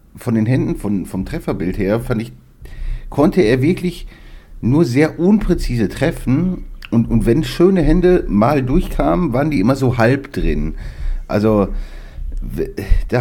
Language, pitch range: German, 90-130 Hz